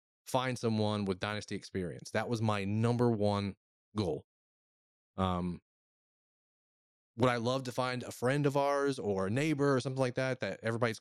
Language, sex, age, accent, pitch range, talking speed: English, male, 20-39, American, 100-120 Hz, 165 wpm